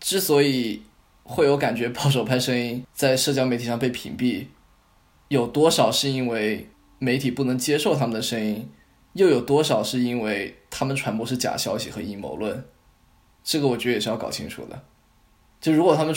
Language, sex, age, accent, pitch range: Chinese, male, 20-39, native, 110-135 Hz